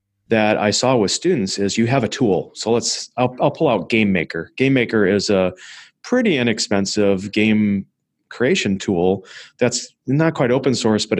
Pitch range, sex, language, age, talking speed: 100-120 Hz, male, English, 30-49, 175 wpm